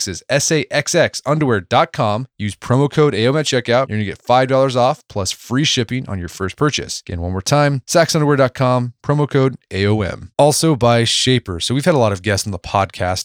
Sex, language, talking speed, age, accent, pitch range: male, English, 185 wpm, 20-39, American, 100-140 Hz